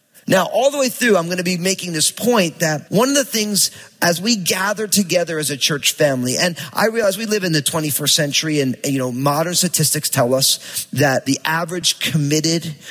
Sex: male